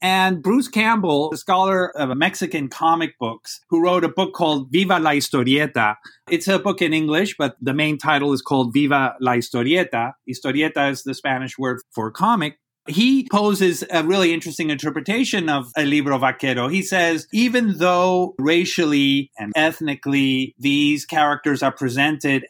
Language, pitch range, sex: English, 140-185 Hz, male